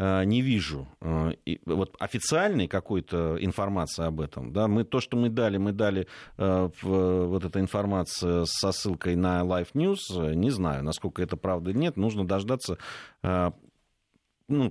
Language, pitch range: Russian, 90-120 Hz